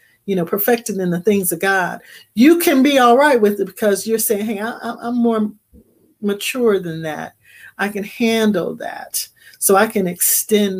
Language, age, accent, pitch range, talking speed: English, 40-59, American, 180-220 Hz, 185 wpm